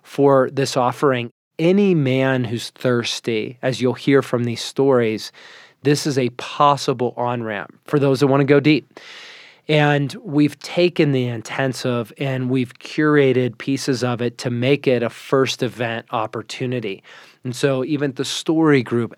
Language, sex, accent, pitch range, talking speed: English, male, American, 120-145 Hz, 155 wpm